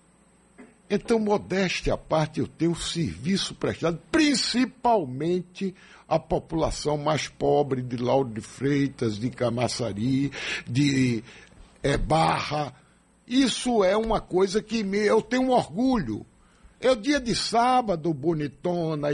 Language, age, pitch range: Portuguese, 60-79, 150-230 Hz